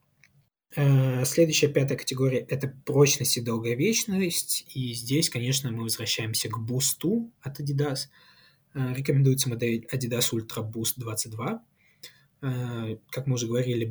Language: Russian